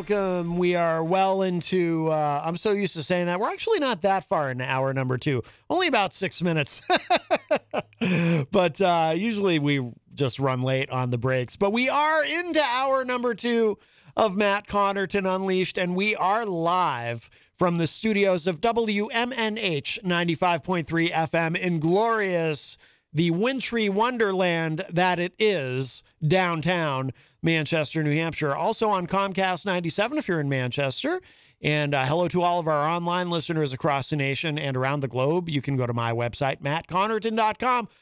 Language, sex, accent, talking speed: English, male, American, 160 wpm